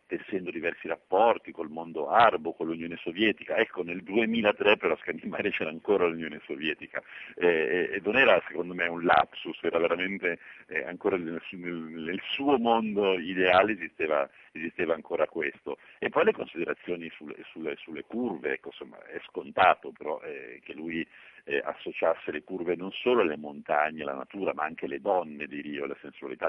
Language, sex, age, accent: Italian, male, 60-79, native